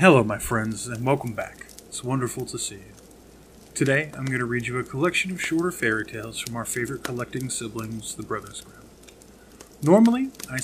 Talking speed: 185 wpm